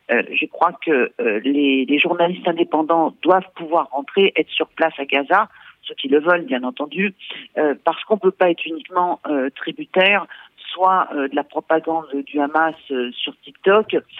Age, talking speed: 50-69, 180 wpm